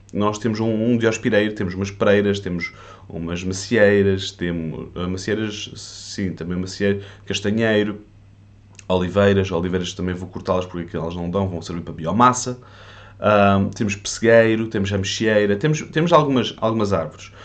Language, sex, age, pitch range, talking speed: Portuguese, male, 20-39, 95-115 Hz, 140 wpm